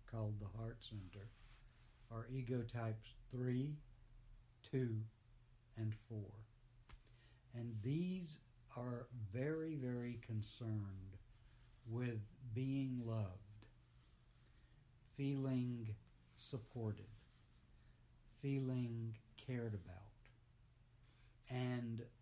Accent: American